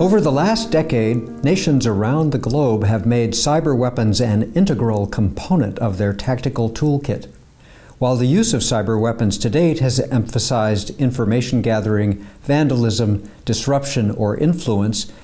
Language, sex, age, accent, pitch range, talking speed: English, male, 60-79, American, 110-145 Hz, 140 wpm